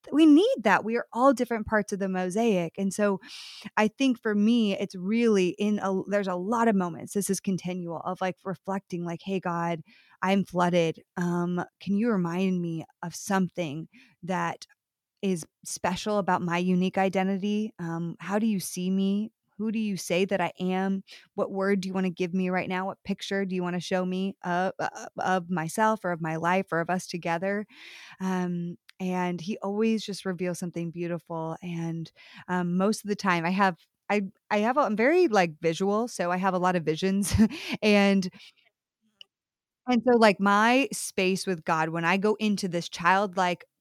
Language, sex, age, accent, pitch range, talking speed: English, female, 20-39, American, 175-205 Hz, 190 wpm